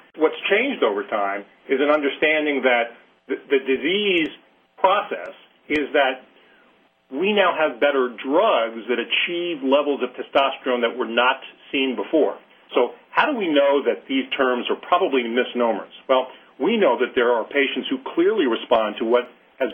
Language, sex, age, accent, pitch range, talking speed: English, male, 40-59, American, 115-140 Hz, 160 wpm